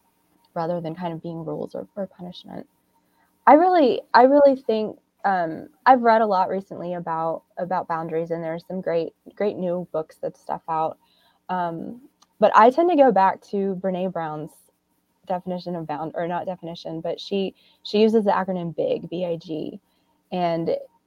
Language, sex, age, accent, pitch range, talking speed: English, female, 20-39, American, 165-205 Hz, 170 wpm